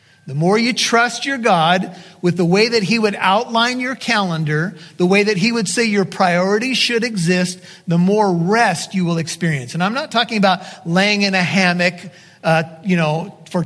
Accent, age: American, 40-59